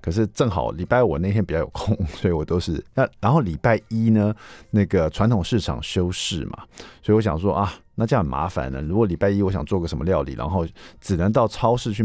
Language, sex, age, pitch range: Chinese, male, 50-69, 85-115 Hz